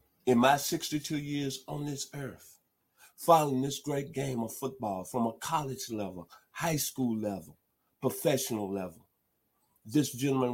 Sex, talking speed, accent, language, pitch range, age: male, 135 wpm, American, English, 115-155 Hz, 50-69